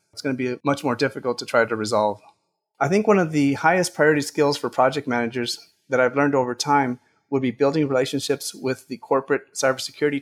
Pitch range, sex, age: 125-145 Hz, male, 40-59